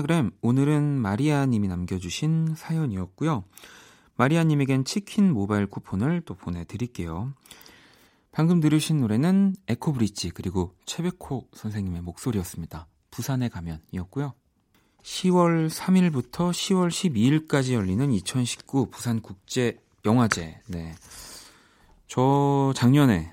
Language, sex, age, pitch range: Korean, male, 30-49, 95-140 Hz